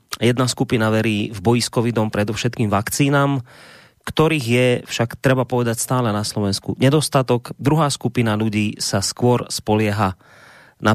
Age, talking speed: 30-49, 135 wpm